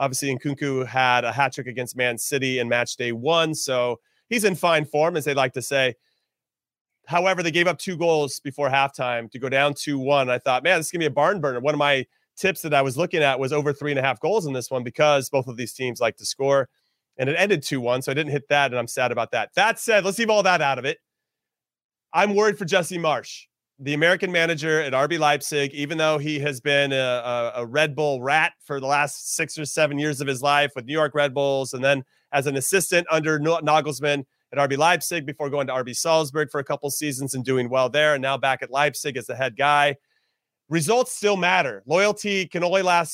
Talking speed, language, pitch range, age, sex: 240 wpm, English, 135-165 Hz, 30-49, male